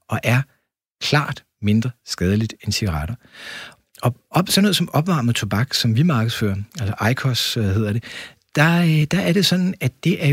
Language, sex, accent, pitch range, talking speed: Danish, male, native, 115-160 Hz, 165 wpm